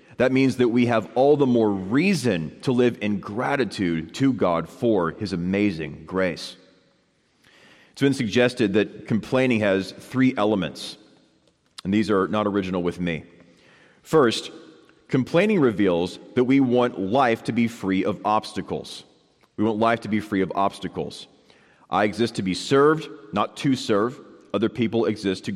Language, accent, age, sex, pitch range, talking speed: English, American, 30-49, male, 95-120 Hz, 155 wpm